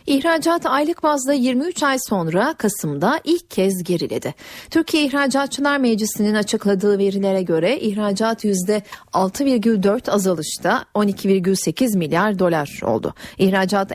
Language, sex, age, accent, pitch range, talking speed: Turkish, female, 40-59, native, 195-275 Hz, 105 wpm